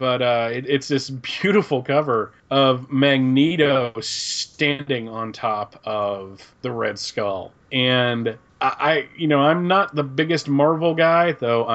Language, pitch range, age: English, 110-145 Hz, 30-49